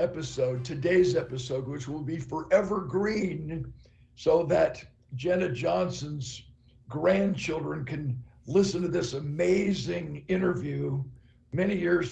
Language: English